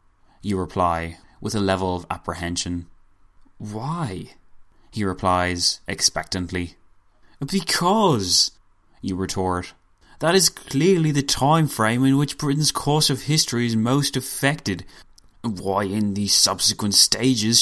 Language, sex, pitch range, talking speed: English, male, 95-135 Hz, 115 wpm